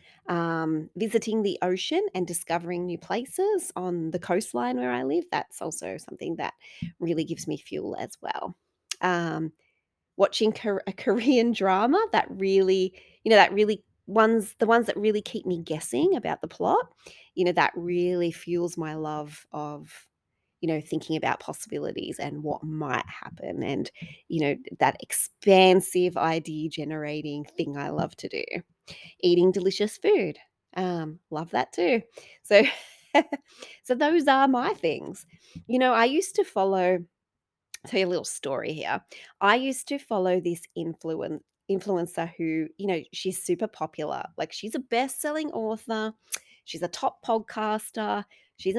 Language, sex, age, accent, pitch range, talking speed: English, female, 30-49, Australian, 165-225 Hz, 155 wpm